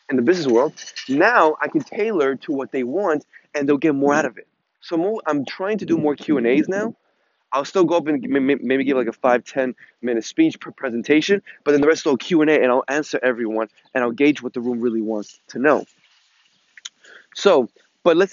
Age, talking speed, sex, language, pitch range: 20-39, 220 wpm, male, English, 135-175 Hz